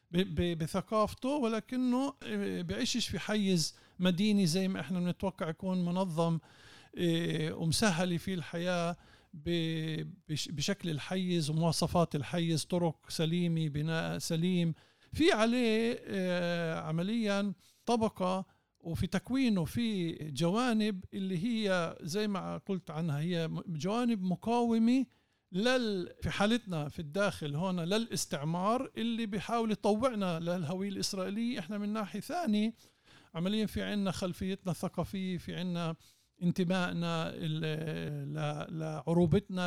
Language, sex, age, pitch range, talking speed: Arabic, male, 50-69, 165-205 Hz, 100 wpm